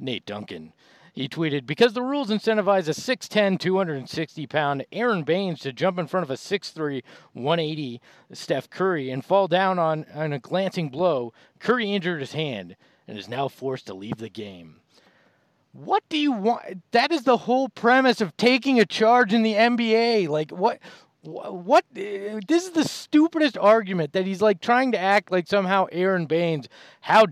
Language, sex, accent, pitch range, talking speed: English, male, American, 170-230 Hz, 170 wpm